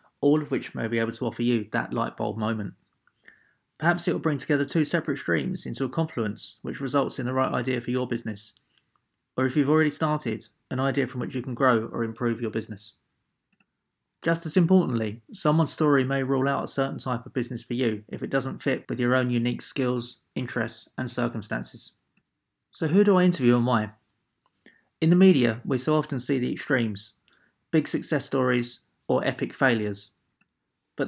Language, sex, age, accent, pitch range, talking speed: English, male, 20-39, British, 115-145 Hz, 190 wpm